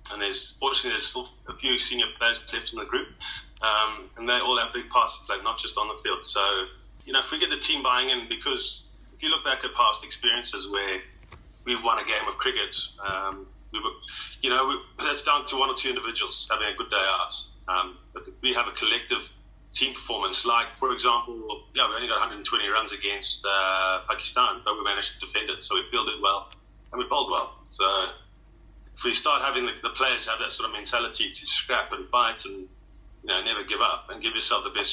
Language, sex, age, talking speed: English, male, 30-49, 225 wpm